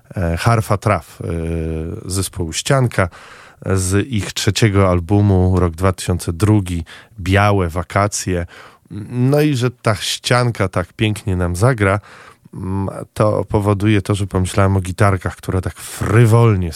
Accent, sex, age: native, male, 20-39